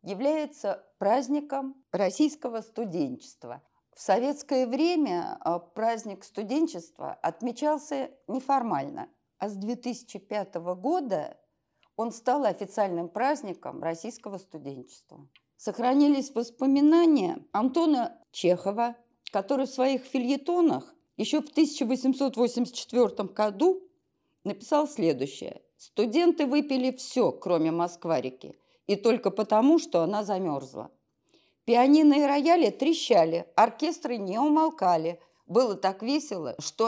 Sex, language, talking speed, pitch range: female, Russian, 95 wpm, 195-285 Hz